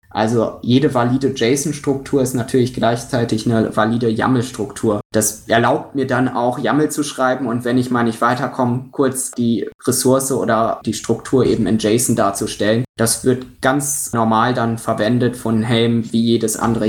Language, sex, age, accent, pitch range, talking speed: German, male, 20-39, German, 115-130 Hz, 160 wpm